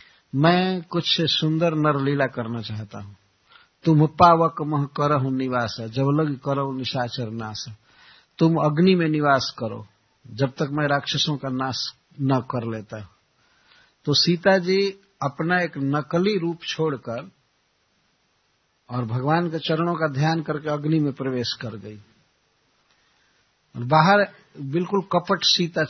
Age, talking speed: 50-69, 135 wpm